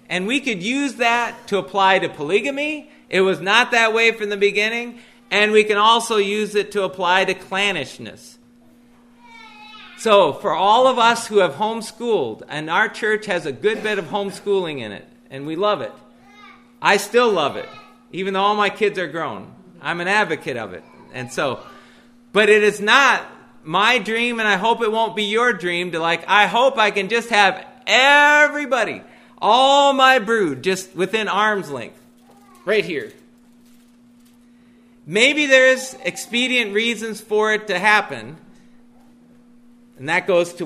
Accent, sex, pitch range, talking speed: American, male, 195-240 Hz, 165 wpm